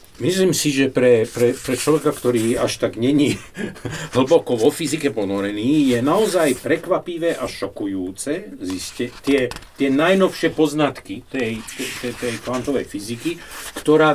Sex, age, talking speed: male, 50-69, 125 wpm